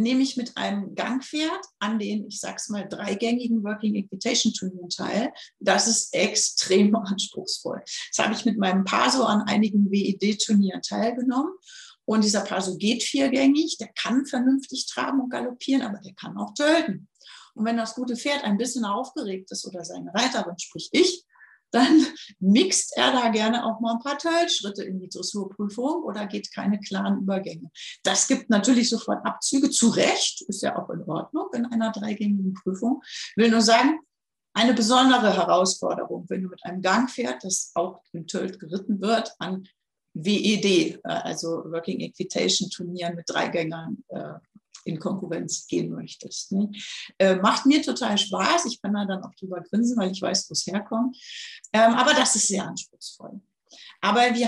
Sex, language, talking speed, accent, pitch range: female, German, 165 wpm, German, 195-250 Hz